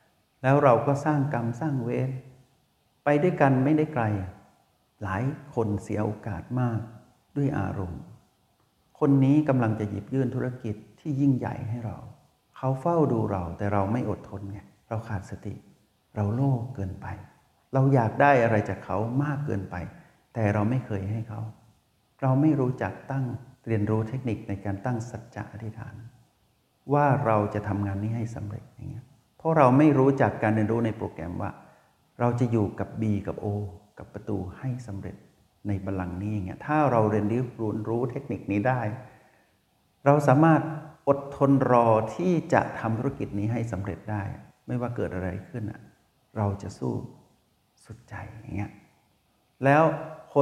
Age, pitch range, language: 60-79, 105-130 Hz, Thai